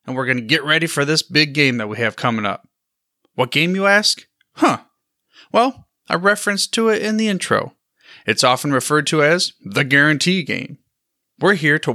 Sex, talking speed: male, 195 wpm